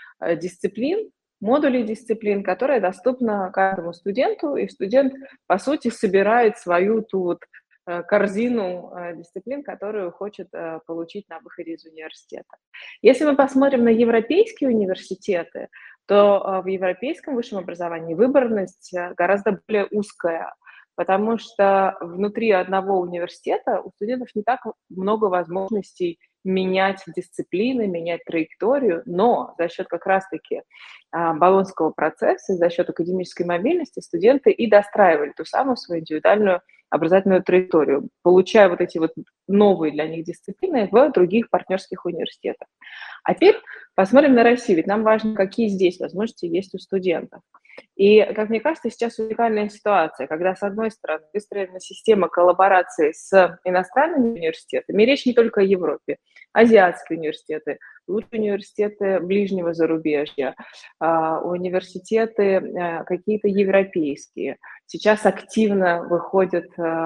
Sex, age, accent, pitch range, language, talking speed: female, 20-39, native, 175-225 Hz, Russian, 120 wpm